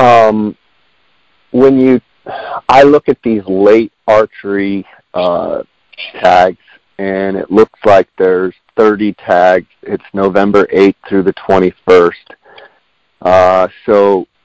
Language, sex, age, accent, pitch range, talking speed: English, male, 40-59, American, 95-105 Hz, 110 wpm